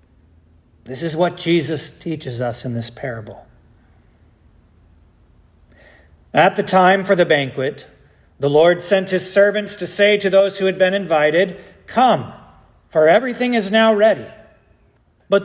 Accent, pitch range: American, 130-195 Hz